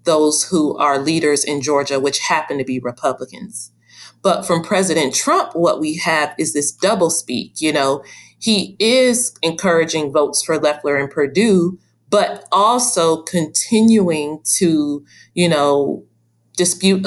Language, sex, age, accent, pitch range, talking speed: English, female, 30-49, American, 150-190 Hz, 135 wpm